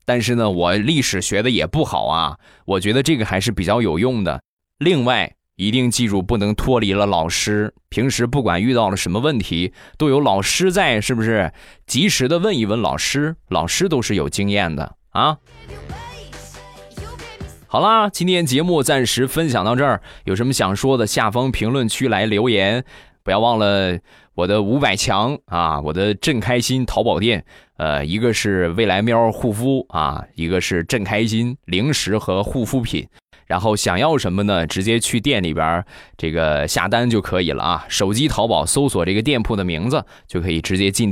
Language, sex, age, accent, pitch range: Chinese, male, 20-39, native, 100-140 Hz